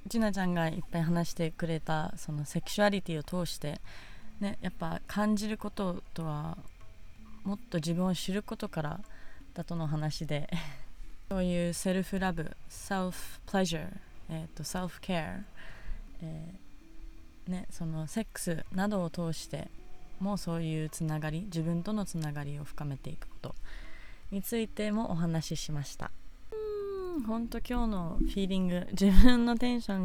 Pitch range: 160-215 Hz